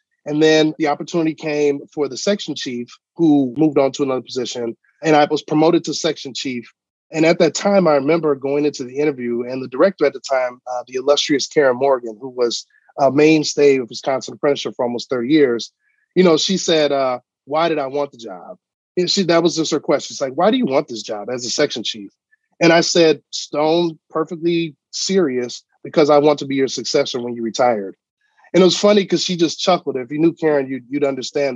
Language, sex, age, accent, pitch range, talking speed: English, male, 30-49, American, 130-170 Hz, 215 wpm